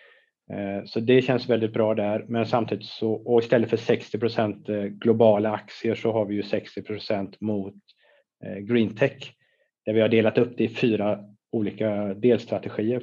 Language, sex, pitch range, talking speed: Swedish, male, 100-115 Hz, 150 wpm